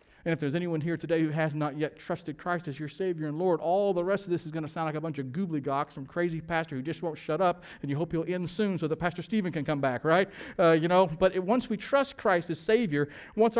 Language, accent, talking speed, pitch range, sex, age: English, American, 285 wpm, 155-210 Hz, male, 50-69